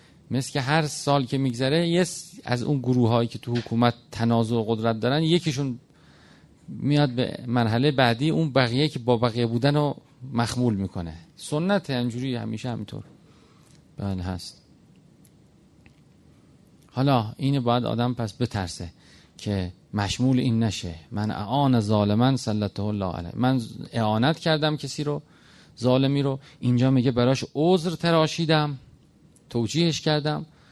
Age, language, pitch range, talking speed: 40-59, Persian, 115-160 Hz, 125 wpm